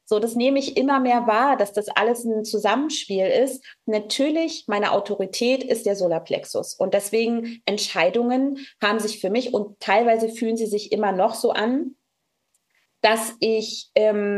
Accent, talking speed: German, 160 wpm